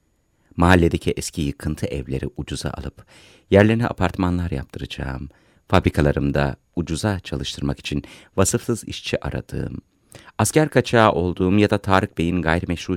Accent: native